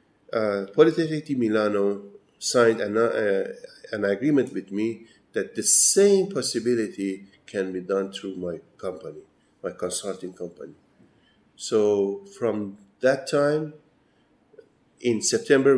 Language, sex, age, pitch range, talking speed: English, male, 50-69, 110-175 Hz, 110 wpm